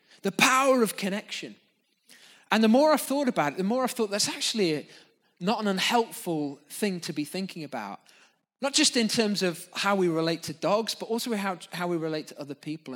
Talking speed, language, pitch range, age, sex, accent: 200 wpm, English, 135-195 Hz, 20-39, male, British